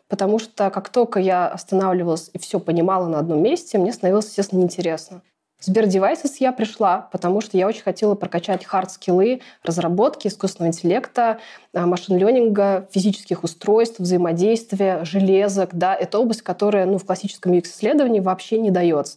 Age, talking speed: 20-39, 150 wpm